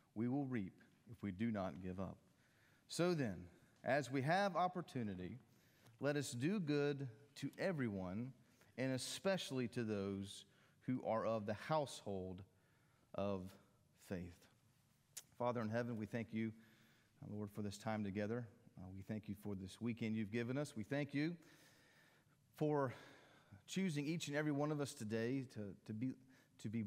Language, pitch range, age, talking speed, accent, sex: English, 115-145 Hz, 40-59, 155 wpm, American, male